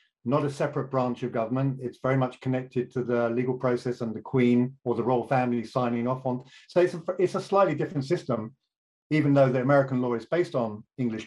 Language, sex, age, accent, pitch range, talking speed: English, male, 50-69, British, 130-160 Hz, 220 wpm